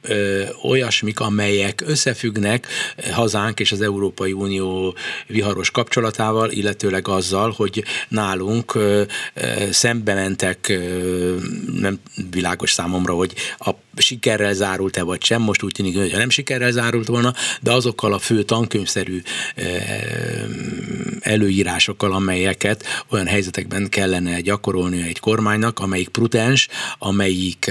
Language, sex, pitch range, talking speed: Hungarian, male, 95-115 Hz, 105 wpm